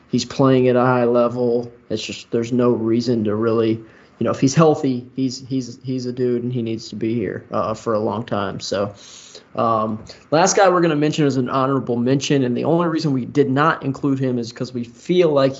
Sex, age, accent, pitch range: male, 20-39, American, 120-130 Hz